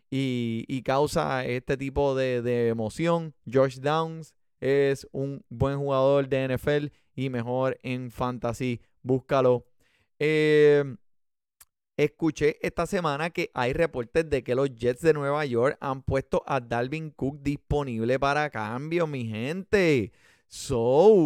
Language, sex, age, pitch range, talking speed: Spanish, male, 30-49, 125-155 Hz, 130 wpm